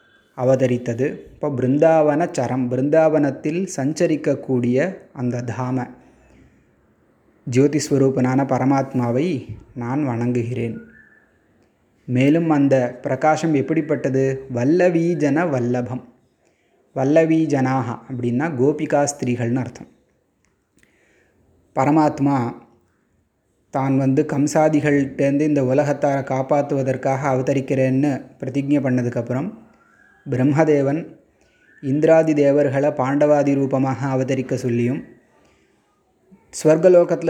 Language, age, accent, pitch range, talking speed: Tamil, 20-39, native, 130-150 Hz, 65 wpm